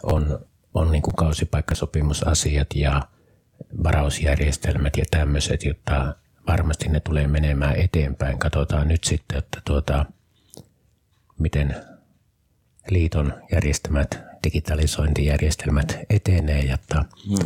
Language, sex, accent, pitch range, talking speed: Finnish, male, native, 70-80 Hz, 85 wpm